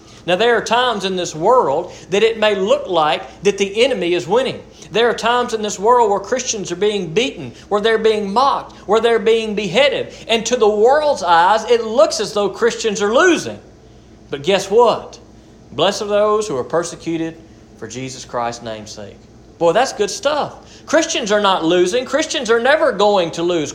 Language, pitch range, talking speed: English, 135-220 Hz, 190 wpm